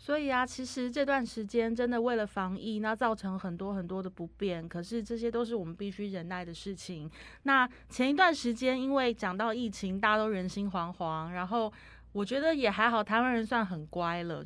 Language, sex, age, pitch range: Chinese, female, 20-39, 175-225 Hz